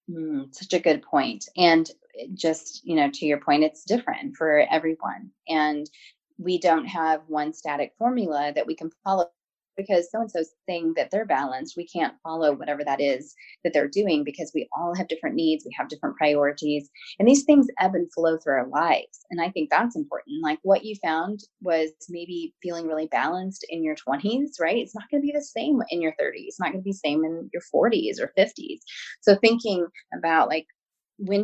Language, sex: English, female